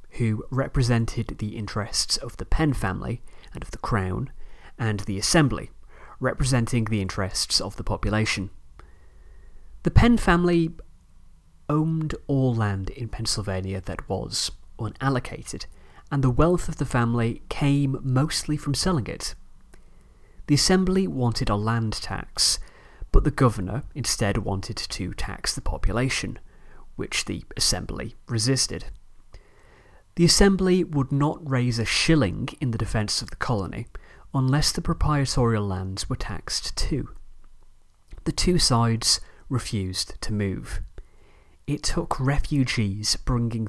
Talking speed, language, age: 125 wpm, English, 30-49